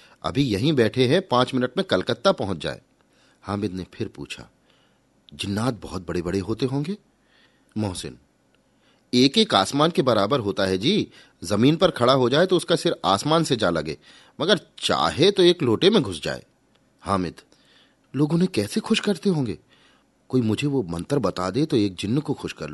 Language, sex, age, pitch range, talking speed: Hindi, male, 30-49, 95-150 Hz, 180 wpm